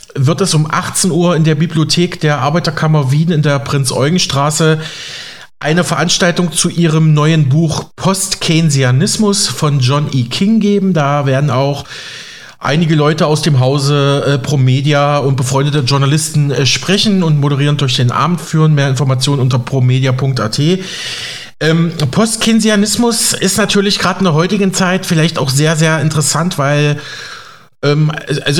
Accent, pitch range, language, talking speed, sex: German, 140-170 Hz, German, 140 wpm, male